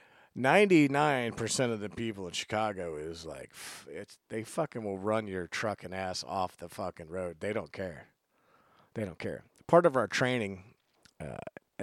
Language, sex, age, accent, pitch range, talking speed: English, male, 40-59, American, 90-110 Hz, 175 wpm